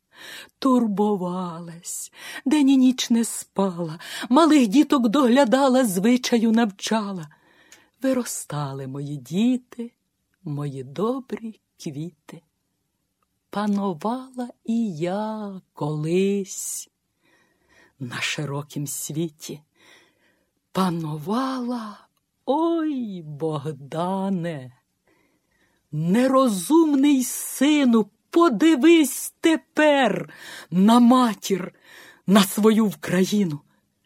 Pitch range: 180-255 Hz